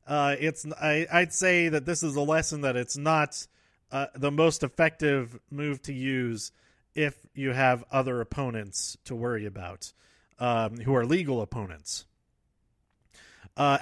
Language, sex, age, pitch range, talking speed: English, male, 30-49, 120-155 Hz, 150 wpm